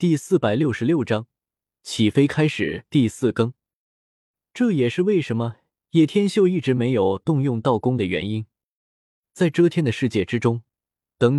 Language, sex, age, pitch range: Chinese, male, 20-39, 110-165 Hz